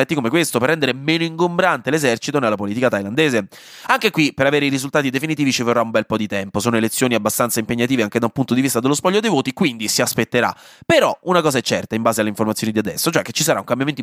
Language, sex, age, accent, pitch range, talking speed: Italian, male, 20-39, native, 115-155 Hz, 250 wpm